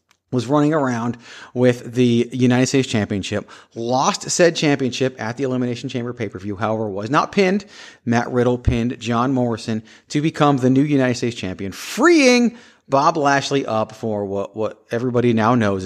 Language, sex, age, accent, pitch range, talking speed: English, male, 30-49, American, 110-135 Hz, 160 wpm